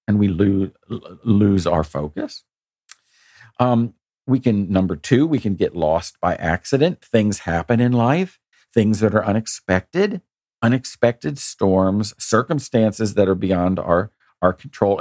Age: 50-69